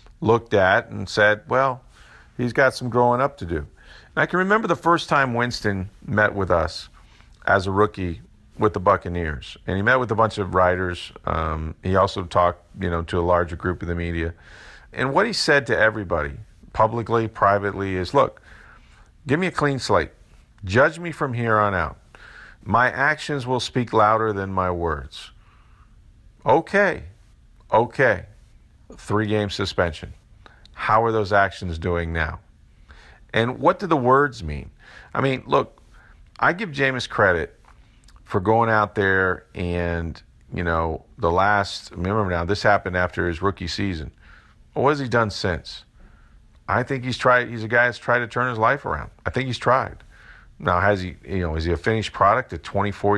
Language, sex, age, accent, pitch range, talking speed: English, male, 50-69, American, 90-115 Hz, 175 wpm